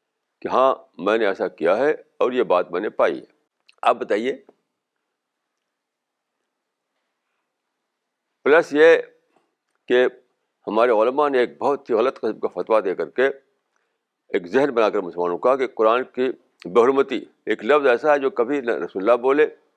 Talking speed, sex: 160 wpm, male